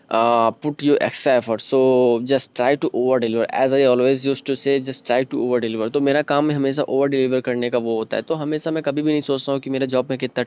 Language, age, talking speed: Hindi, 20-39, 260 wpm